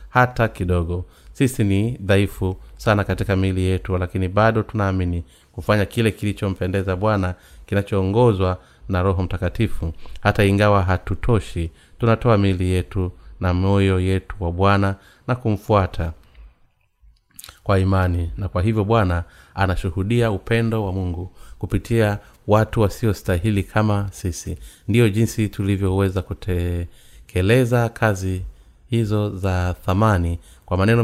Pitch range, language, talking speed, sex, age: 90-110 Hz, Swahili, 110 wpm, male, 30-49